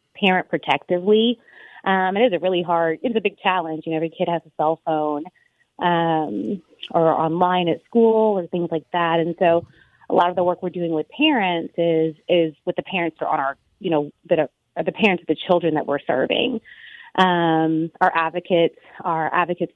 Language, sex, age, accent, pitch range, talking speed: English, female, 30-49, American, 160-200 Hz, 200 wpm